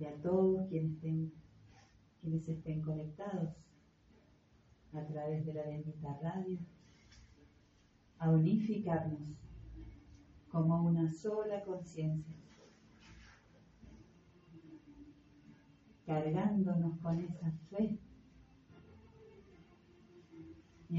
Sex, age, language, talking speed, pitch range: female, 40-59, Spanish, 70 wpm, 150-180 Hz